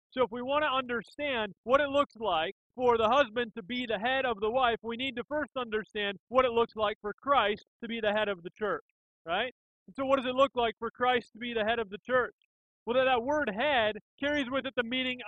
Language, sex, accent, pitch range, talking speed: English, male, American, 200-255 Hz, 250 wpm